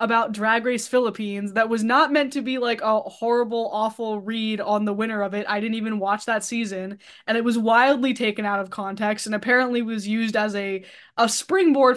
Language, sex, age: English, female, 10-29